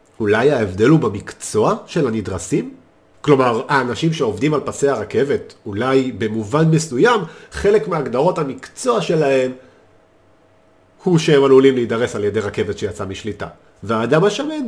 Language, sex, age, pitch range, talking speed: Hebrew, male, 40-59, 105-155 Hz, 125 wpm